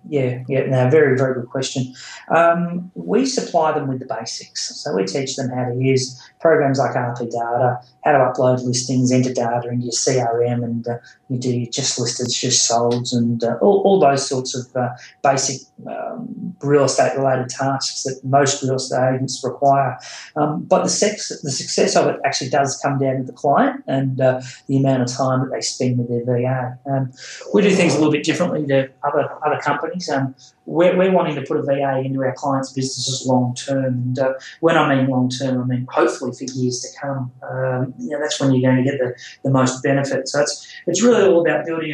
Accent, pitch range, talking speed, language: Australian, 130-150 Hz, 205 wpm, English